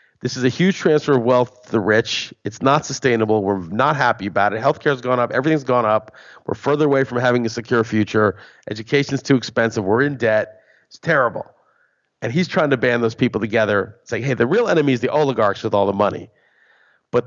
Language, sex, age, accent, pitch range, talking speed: English, male, 40-59, American, 110-135 Hz, 220 wpm